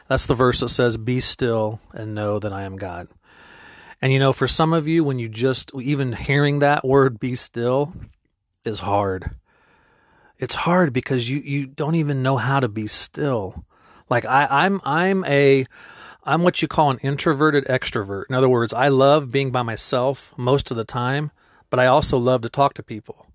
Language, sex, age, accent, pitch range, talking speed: English, male, 30-49, American, 115-140 Hz, 190 wpm